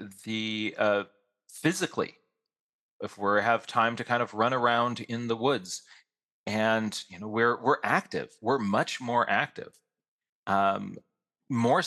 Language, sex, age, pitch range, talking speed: English, male, 30-49, 110-135 Hz, 135 wpm